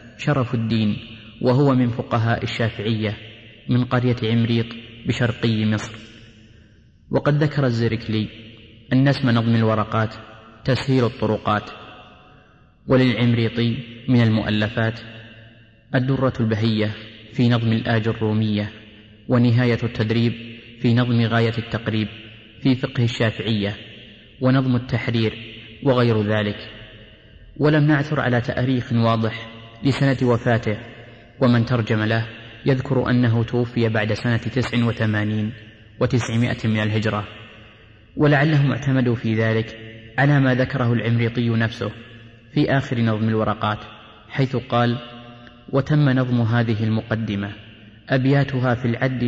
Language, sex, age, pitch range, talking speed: Arabic, male, 30-49, 110-125 Hz, 100 wpm